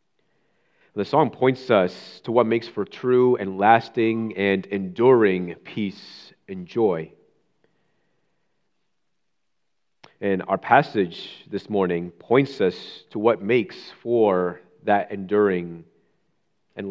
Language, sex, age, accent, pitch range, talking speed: English, male, 30-49, American, 100-120 Hz, 105 wpm